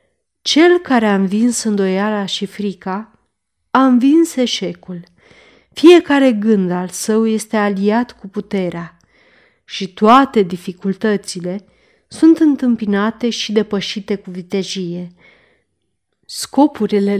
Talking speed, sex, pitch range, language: 100 wpm, female, 195-240 Hz, Romanian